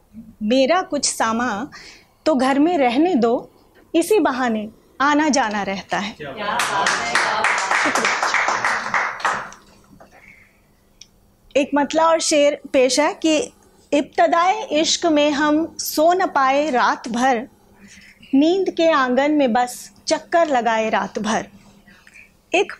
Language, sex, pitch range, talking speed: Hindi, female, 245-325 Hz, 105 wpm